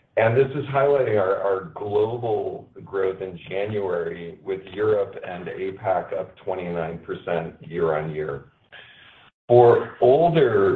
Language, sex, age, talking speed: English, male, 40-59, 105 wpm